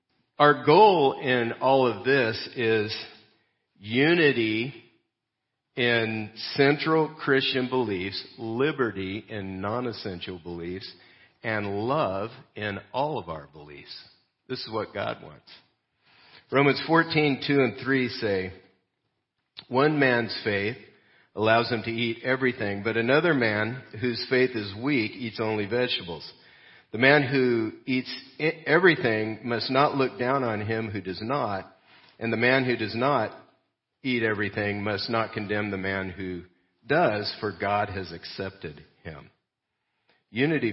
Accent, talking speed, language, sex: American, 130 wpm, English, male